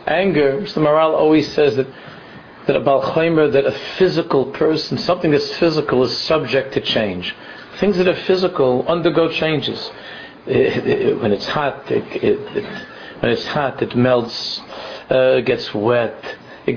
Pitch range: 125-160 Hz